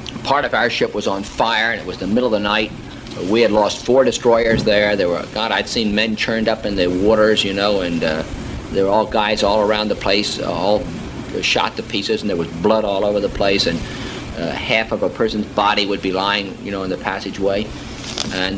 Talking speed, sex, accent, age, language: 235 wpm, male, American, 50-69, English